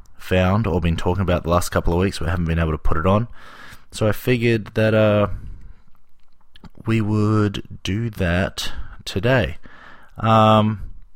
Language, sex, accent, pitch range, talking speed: English, male, Australian, 85-110 Hz, 155 wpm